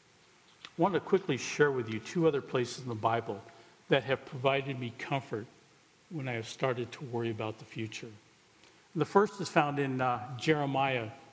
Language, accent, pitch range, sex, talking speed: English, American, 120-170 Hz, male, 180 wpm